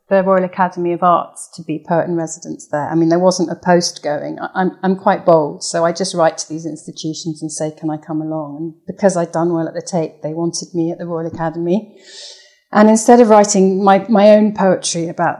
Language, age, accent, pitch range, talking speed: English, 40-59, British, 165-190 Hz, 230 wpm